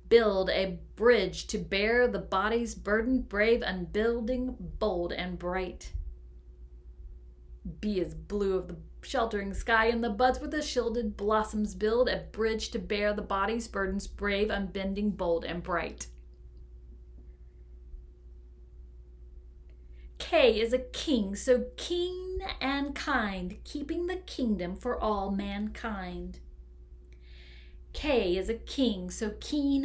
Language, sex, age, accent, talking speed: English, female, 40-59, American, 120 wpm